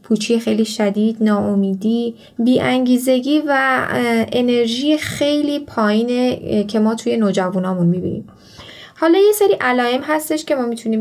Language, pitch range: Persian, 200-250 Hz